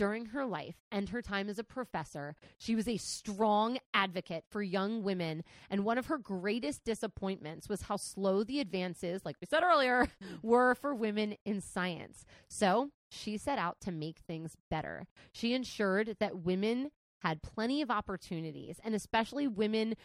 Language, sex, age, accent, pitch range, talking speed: English, female, 20-39, American, 180-225 Hz, 170 wpm